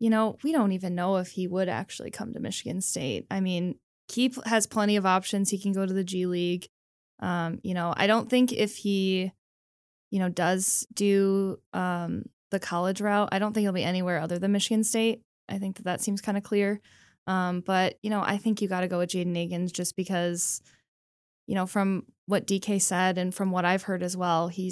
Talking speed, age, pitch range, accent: 220 wpm, 10-29, 175-200 Hz, American